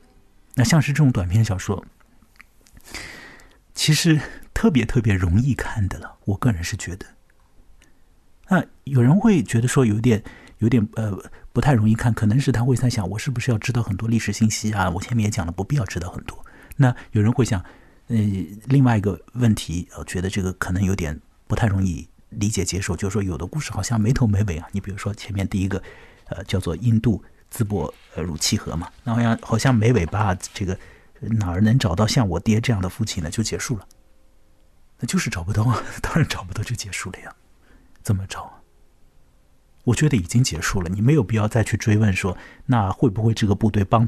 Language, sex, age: Chinese, male, 50-69